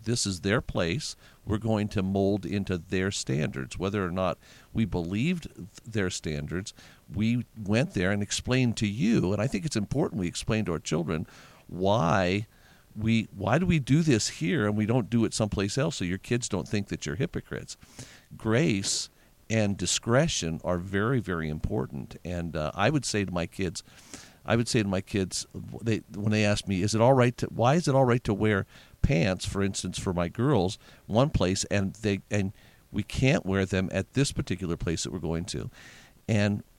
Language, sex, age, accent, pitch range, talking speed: English, male, 50-69, American, 95-115 Hz, 195 wpm